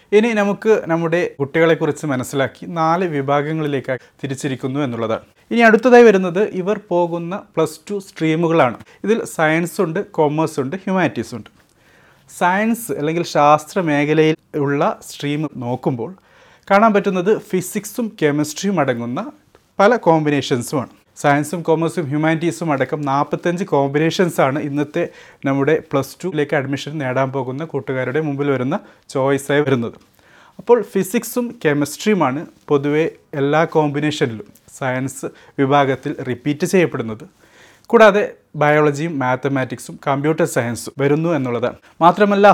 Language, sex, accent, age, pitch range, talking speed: Malayalam, male, native, 30-49, 140-170 Hz, 100 wpm